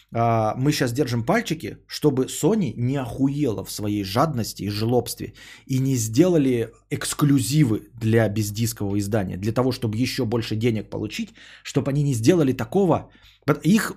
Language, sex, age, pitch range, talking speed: Bulgarian, male, 20-39, 115-150 Hz, 140 wpm